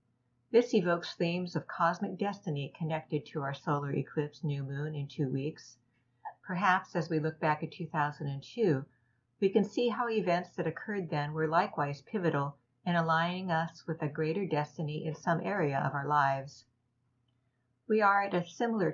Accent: American